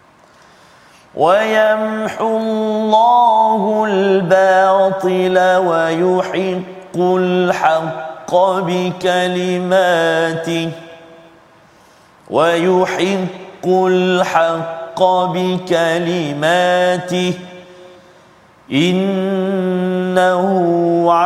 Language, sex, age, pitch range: Malayalam, male, 40-59, 165-185 Hz